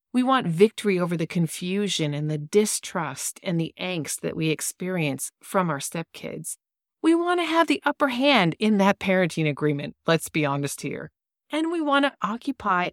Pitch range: 160-230 Hz